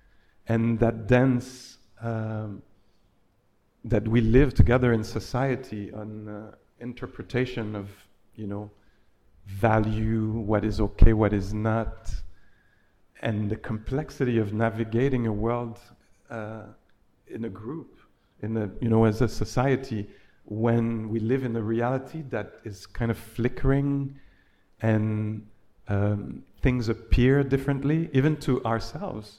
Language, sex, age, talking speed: English, male, 50-69, 125 wpm